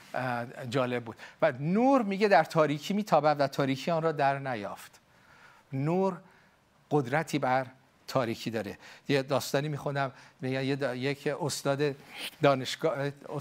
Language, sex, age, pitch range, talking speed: Persian, male, 50-69, 130-165 Hz, 125 wpm